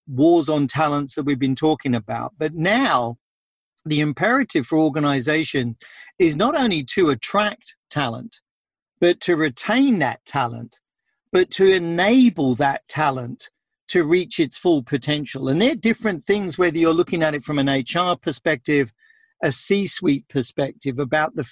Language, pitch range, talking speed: English, 140-180 Hz, 150 wpm